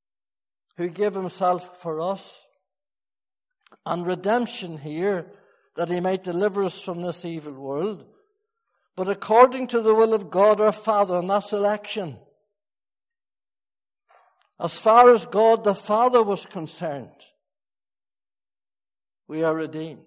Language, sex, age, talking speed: English, male, 60-79, 120 wpm